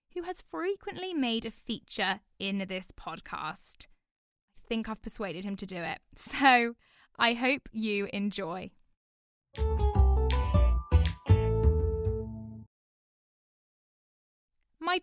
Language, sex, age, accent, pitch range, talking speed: English, female, 10-29, British, 195-265 Hz, 90 wpm